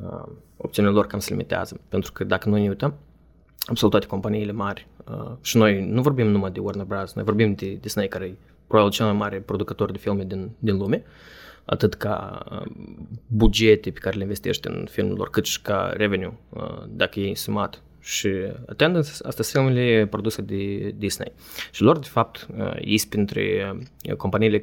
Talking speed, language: 195 wpm, Romanian